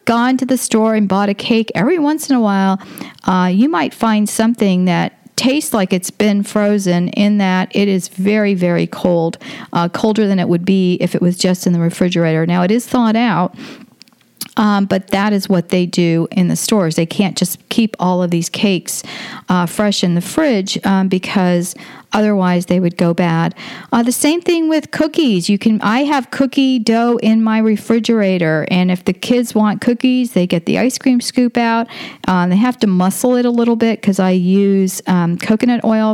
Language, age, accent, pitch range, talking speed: English, 40-59, American, 185-235 Hz, 205 wpm